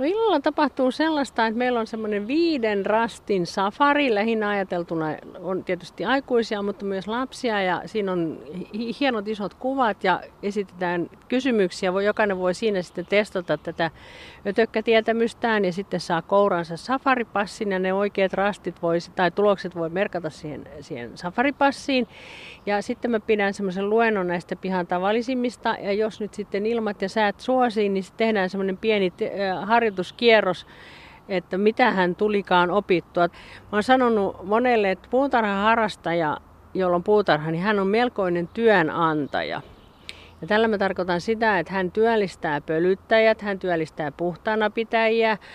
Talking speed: 140 wpm